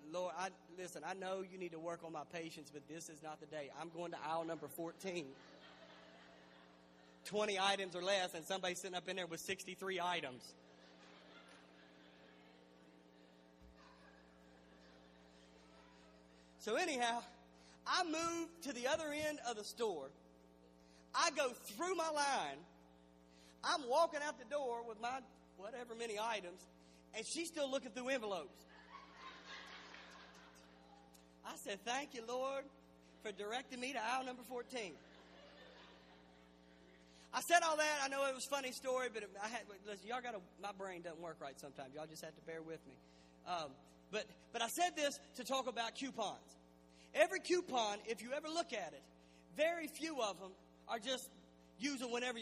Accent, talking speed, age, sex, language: American, 155 wpm, 40-59, male, English